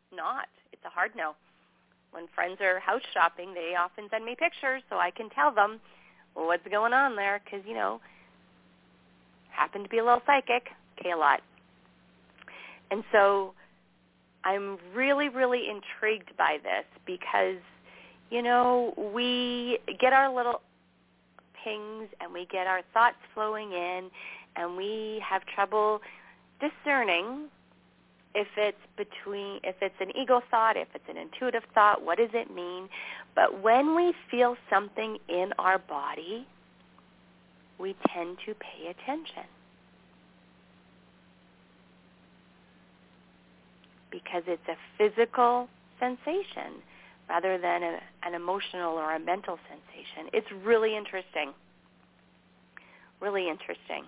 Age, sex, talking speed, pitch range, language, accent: 40-59, female, 125 wpm, 175-235 Hz, English, American